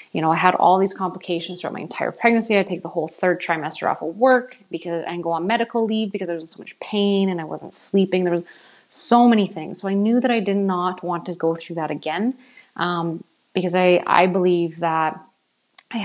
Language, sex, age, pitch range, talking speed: English, female, 20-39, 170-190 Hz, 230 wpm